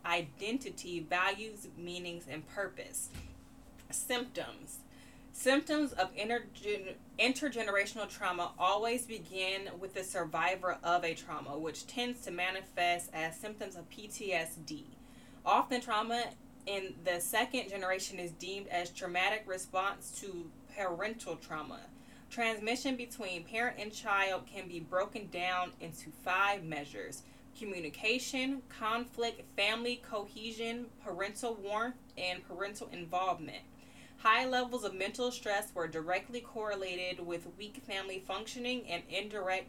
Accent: American